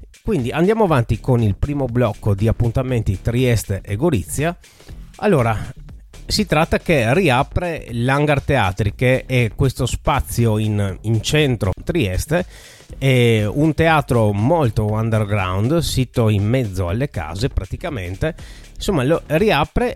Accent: native